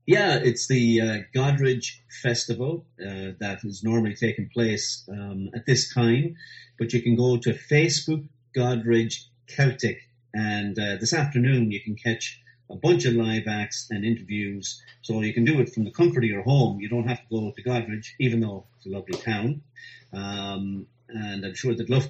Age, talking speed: 40-59, 185 wpm